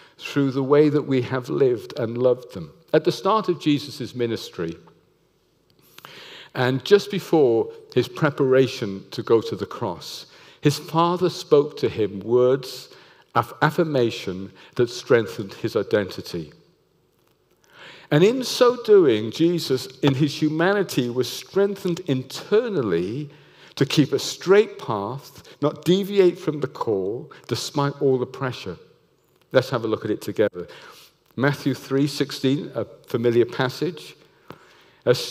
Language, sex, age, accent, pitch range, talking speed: English, male, 50-69, British, 125-165 Hz, 130 wpm